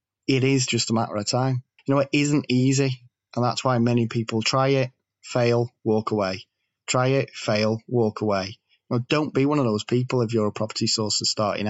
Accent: British